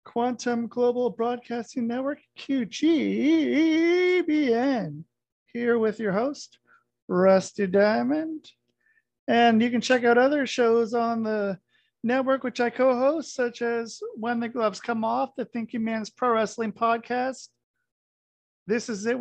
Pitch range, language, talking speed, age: 200-245 Hz, English, 130 wpm, 40-59